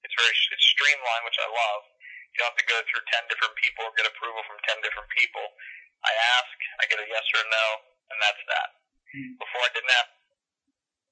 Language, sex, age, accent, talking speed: English, male, 30-49, American, 210 wpm